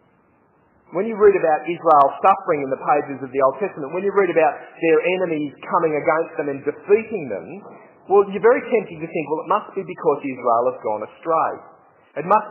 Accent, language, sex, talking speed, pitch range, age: Australian, English, male, 200 wpm, 145-220 Hz, 40-59